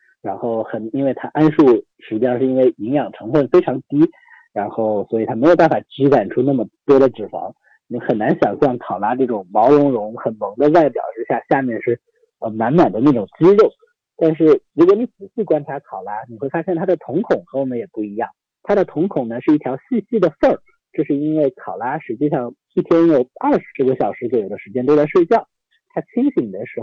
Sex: male